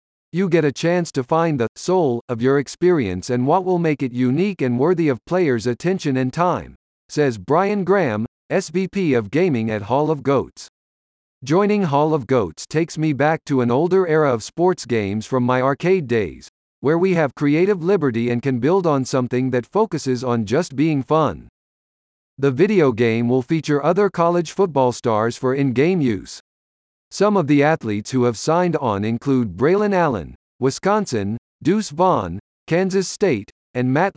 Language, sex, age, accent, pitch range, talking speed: English, male, 50-69, American, 120-175 Hz, 170 wpm